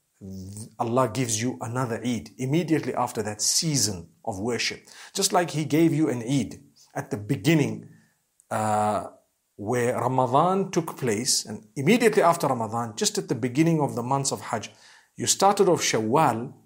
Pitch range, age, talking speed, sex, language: 115-160 Hz, 50-69, 155 wpm, male, English